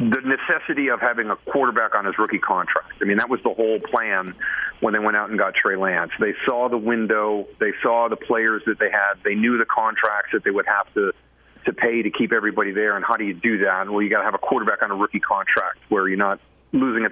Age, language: 40-59, English